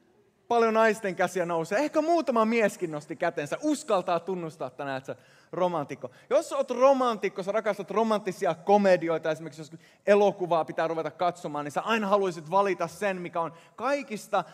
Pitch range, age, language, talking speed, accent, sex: 165-210 Hz, 20-39, Finnish, 155 wpm, native, male